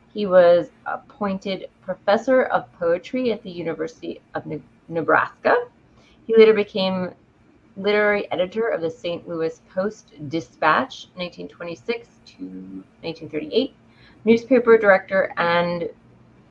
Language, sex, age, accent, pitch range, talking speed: English, female, 30-49, American, 165-220 Hz, 100 wpm